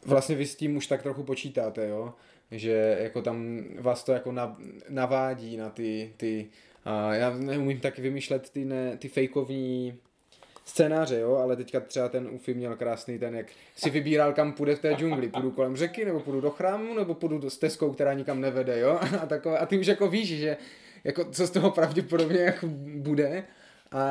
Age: 20-39